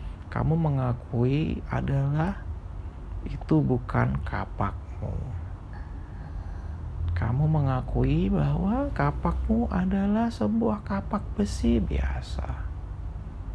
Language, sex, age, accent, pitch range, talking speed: Indonesian, male, 40-59, native, 85-145 Hz, 65 wpm